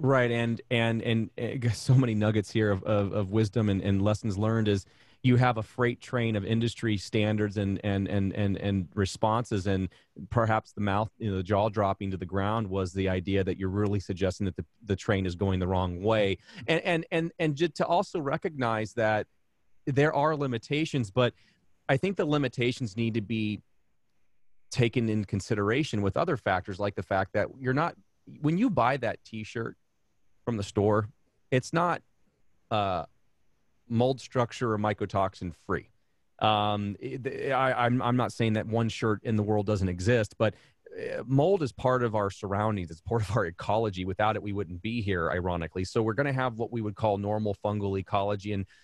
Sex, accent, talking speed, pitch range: male, American, 195 wpm, 100-120 Hz